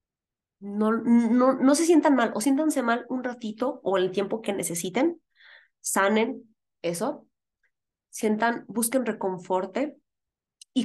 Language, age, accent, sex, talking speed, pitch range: Spanish, 20-39, Mexican, female, 120 wpm, 200-275 Hz